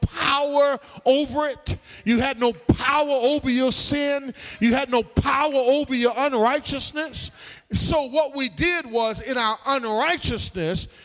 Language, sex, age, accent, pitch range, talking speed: English, male, 40-59, American, 210-285 Hz, 135 wpm